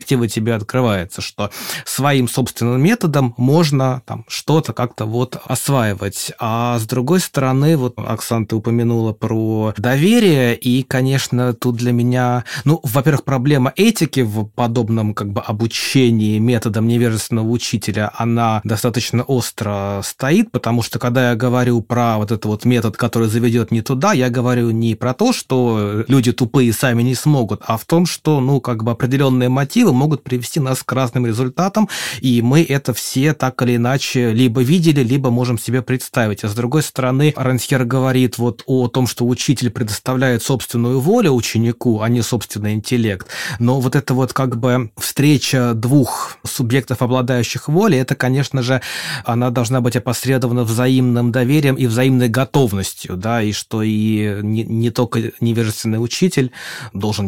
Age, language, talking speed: 20-39, Russian, 155 wpm